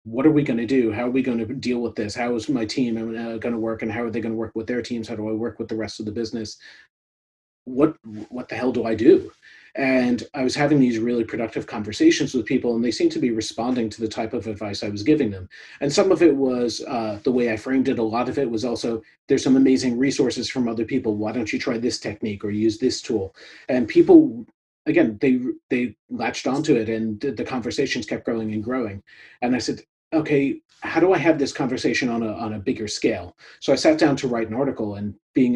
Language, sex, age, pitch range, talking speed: English, male, 30-49, 110-135 Hz, 250 wpm